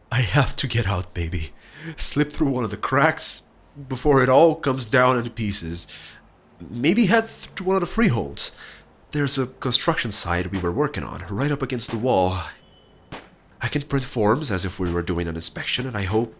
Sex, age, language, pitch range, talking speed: male, 30-49, English, 95-145 Hz, 195 wpm